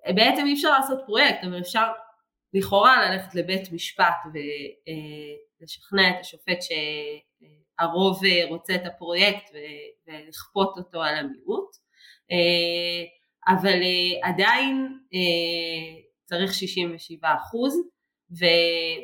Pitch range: 170-225 Hz